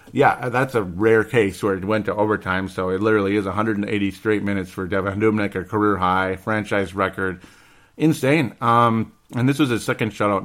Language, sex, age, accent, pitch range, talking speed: English, male, 40-59, American, 100-135 Hz, 190 wpm